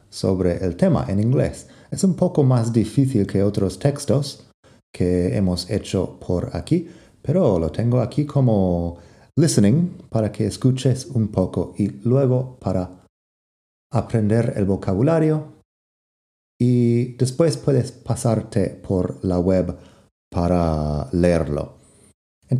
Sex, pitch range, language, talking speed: male, 85-125 Hz, Spanish, 120 wpm